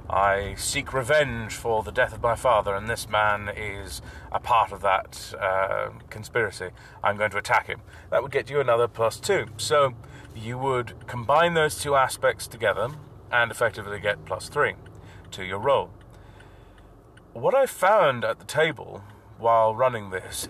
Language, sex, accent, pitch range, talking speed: English, male, British, 110-135 Hz, 165 wpm